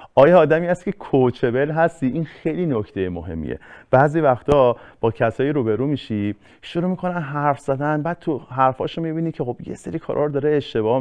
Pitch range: 110-145 Hz